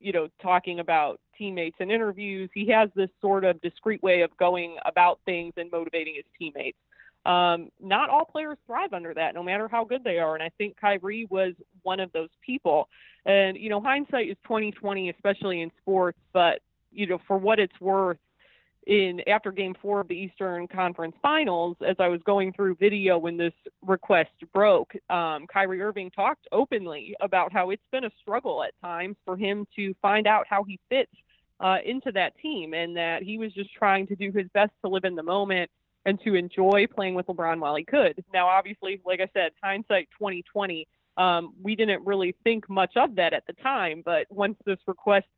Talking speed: 200 wpm